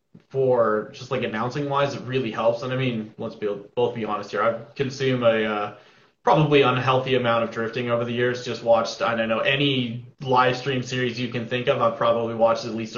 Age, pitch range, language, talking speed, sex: 20-39, 110-140 Hz, English, 215 wpm, male